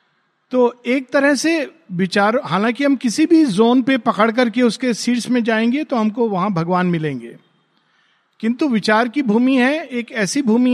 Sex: male